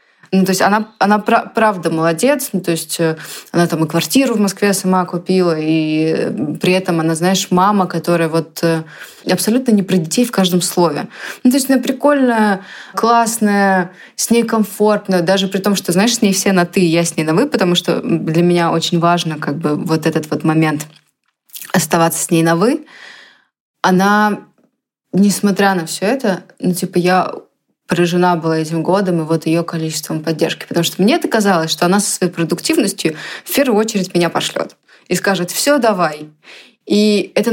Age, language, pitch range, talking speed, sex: 20-39, Russian, 165-205 Hz, 180 wpm, female